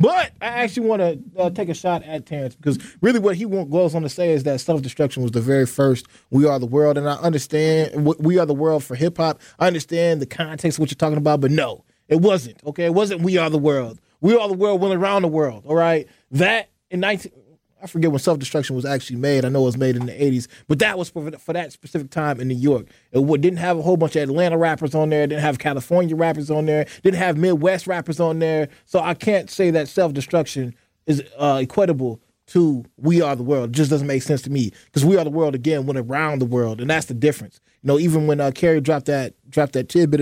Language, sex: English, male